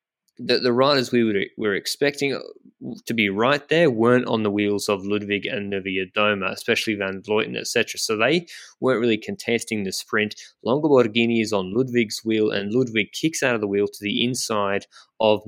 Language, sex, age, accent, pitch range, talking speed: English, male, 20-39, Australian, 100-115 Hz, 195 wpm